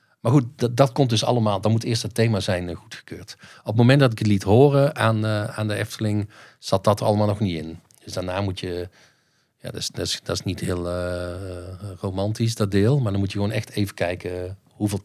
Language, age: Dutch, 40-59